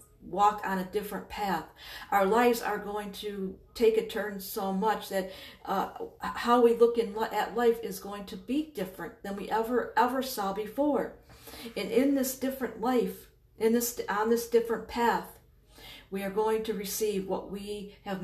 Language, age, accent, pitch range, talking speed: English, 50-69, American, 190-230 Hz, 175 wpm